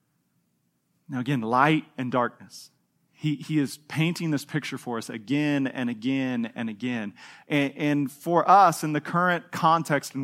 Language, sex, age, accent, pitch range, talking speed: English, male, 30-49, American, 130-170 Hz, 160 wpm